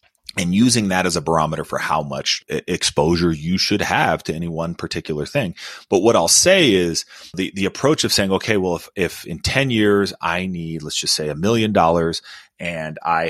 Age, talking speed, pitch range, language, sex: 30-49, 205 wpm, 85-105 Hz, English, male